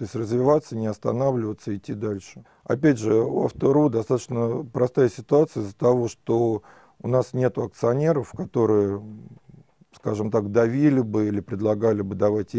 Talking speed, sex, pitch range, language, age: 145 wpm, male, 105-125 Hz, Russian, 40-59